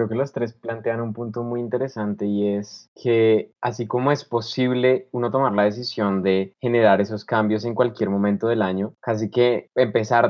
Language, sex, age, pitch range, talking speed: Spanish, male, 20-39, 105-130 Hz, 185 wpm